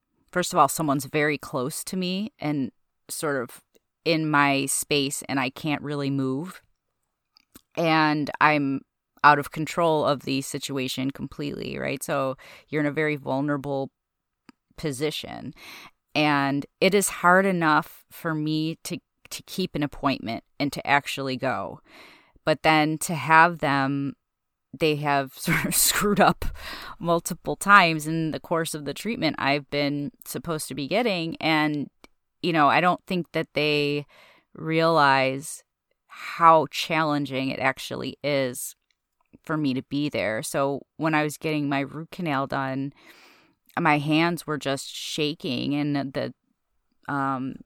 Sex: female